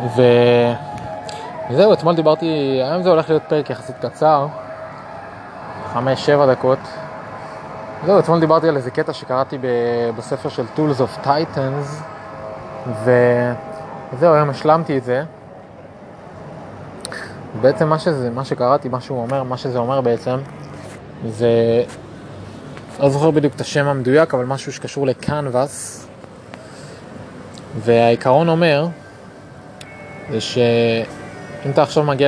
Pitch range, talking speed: 125-150 Hz, 85 wpm